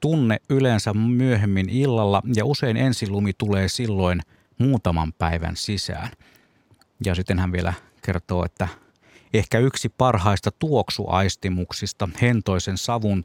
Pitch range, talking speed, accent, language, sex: 90-115 Hz, 115 wpm, native, Finnish, male